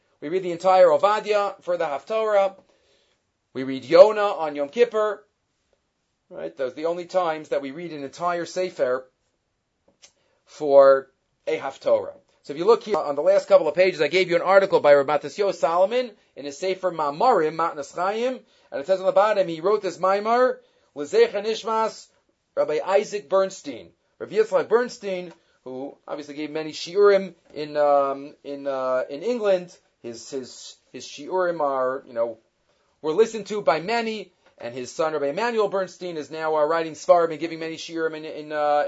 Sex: male